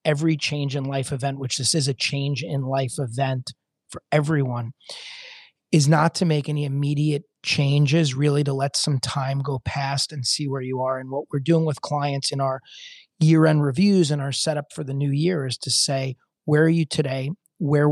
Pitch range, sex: 135-155 Hz, male